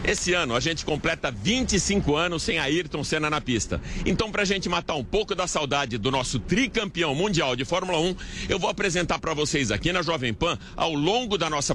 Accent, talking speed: Brazilian, 205 wpm